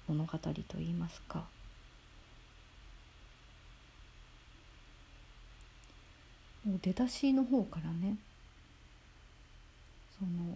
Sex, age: female, 40-59